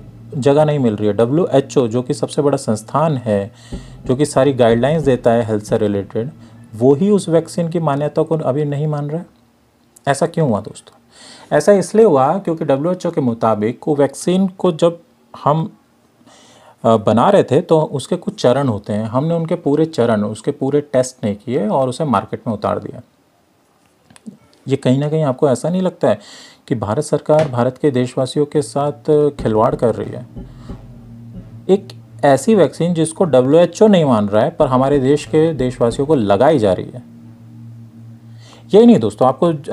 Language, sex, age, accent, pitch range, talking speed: English, male, 40-59, Indian, 115-155 Hz, 145 wpm